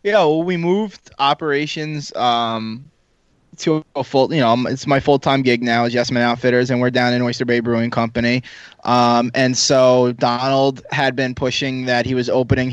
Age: 20-39